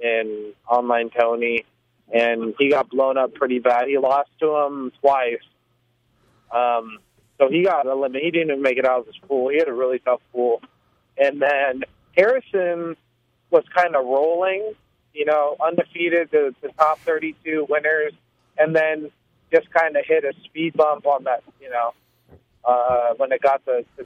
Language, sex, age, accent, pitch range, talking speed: English, male, 30-49, American, 120-155 Hz, 180 wpm